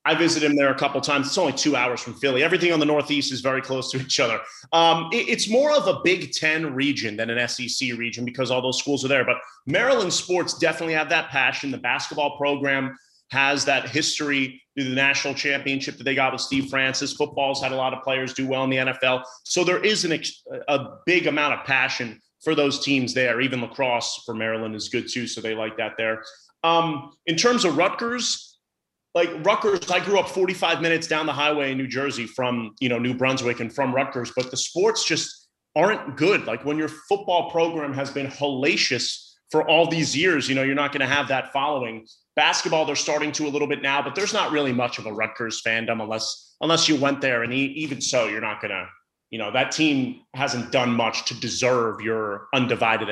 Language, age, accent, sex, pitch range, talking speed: English, 30-49, American, male, 125-155 Hz, 215 wpm